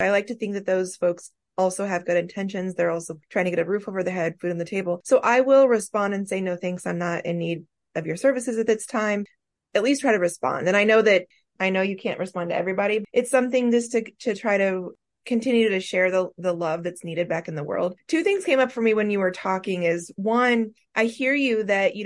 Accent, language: American, English